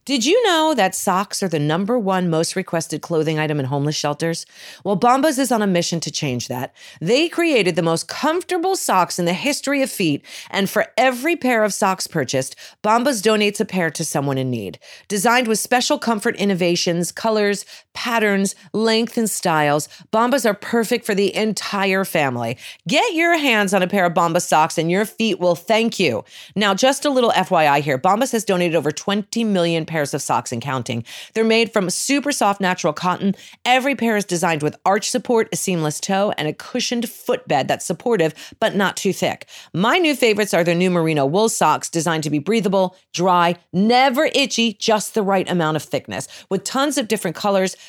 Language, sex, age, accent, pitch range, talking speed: English, female, 40-59, American, 165-230 Hz, 195 wpm